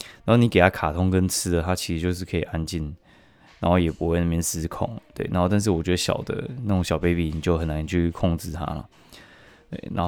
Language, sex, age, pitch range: Chinese, male, 20-39, 85-100 Hz